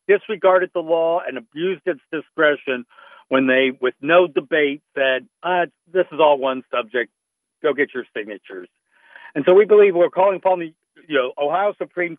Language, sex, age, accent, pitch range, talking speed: English, male, 60-79, American, 140-180 Hz, 170 wpm